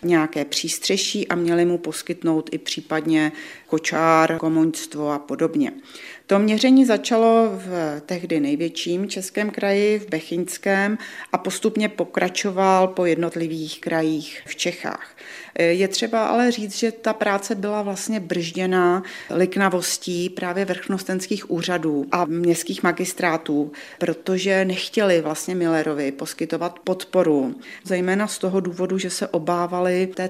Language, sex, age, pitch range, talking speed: Czech, female, 40-59, 160-185 Hz, 120 wpm